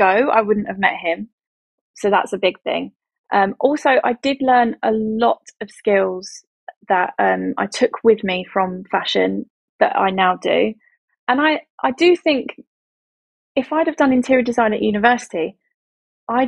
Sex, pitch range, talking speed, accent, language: female, 195-250 Hz, 165 wpm, British, English